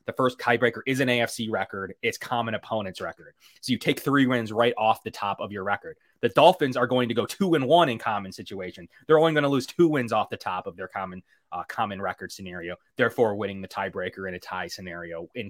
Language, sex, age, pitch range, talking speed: English, male, 20-39, 110-140 Hz, 235 wpm